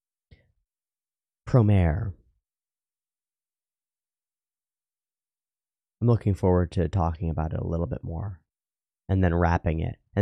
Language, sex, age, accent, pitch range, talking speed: English, male, 30-49, American, 85-110 Hz, 100 wpm